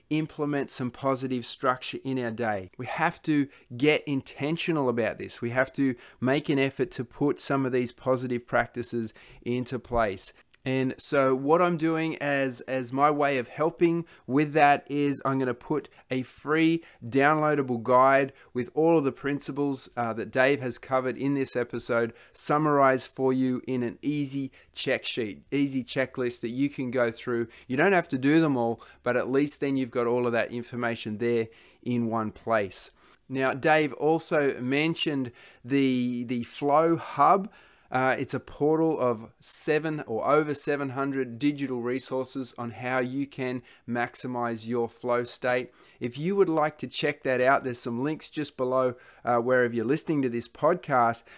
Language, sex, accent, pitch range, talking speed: English, male, Australian, 120-145 Hz, 170 wpm